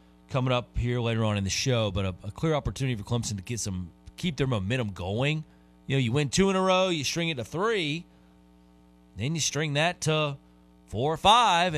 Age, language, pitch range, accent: 30-49, English, 100-160 Hz, American